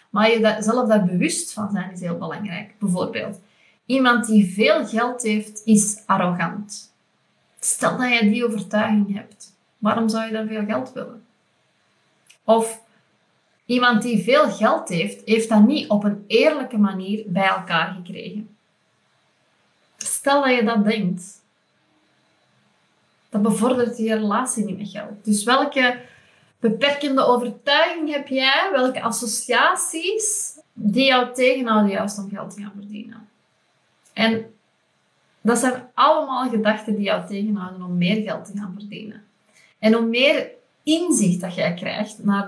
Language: Dutch